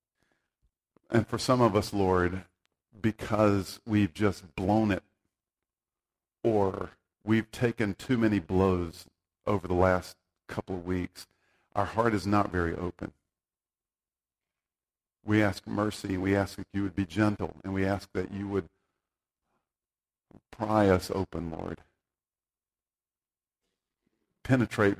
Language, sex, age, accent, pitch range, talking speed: English, male, 50-69, American, 85-105 Hz, 120 wpm